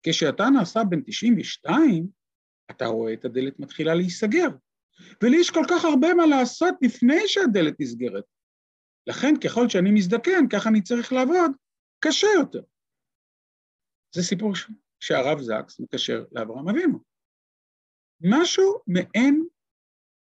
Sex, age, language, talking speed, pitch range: male, 50-69, Hebrew, 120 wpm, 165-260 Hz